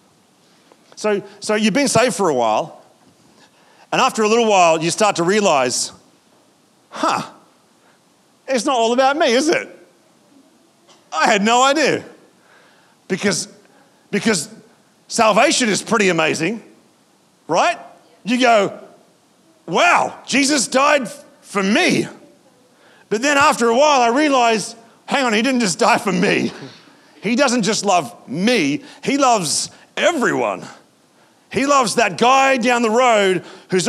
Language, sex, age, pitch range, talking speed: English, male, 40-59, 205-255 Hz, 130 wpm